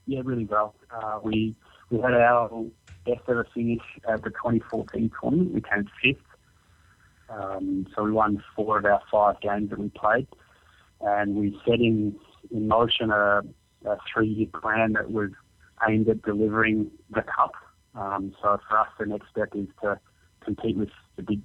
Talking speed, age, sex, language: 165 wpm, 30-49, male, English